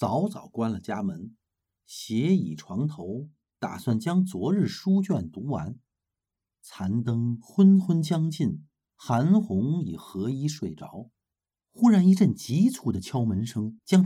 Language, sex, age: Chinese, male, 50-69